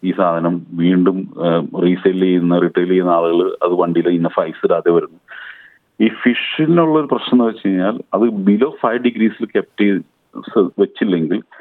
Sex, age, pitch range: male, 40-59, 90-115 Hz